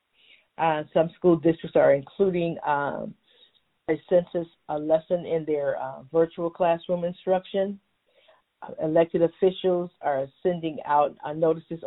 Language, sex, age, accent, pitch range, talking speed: English, female, 50-69, American, 155-180 Hz, 125 wpm